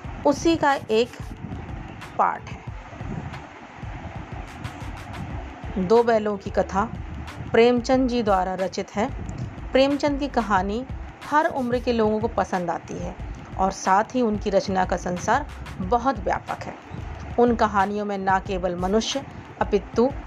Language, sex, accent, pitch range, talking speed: Hindi, female, native, 190-240 Hz, 125 wpm